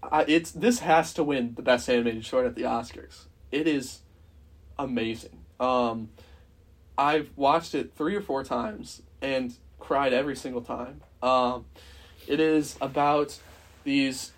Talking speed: 145 wpm